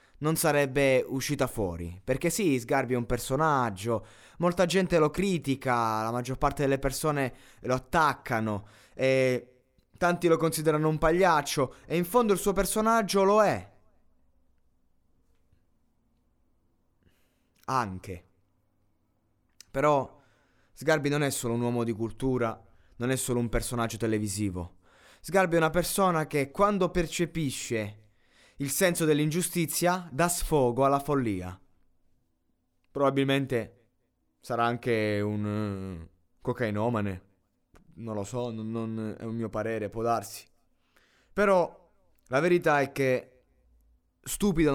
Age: 20-39